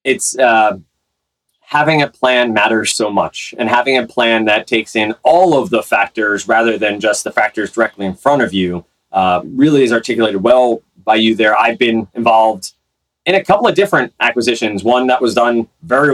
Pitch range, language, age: 105-125 Hz, English, 20-39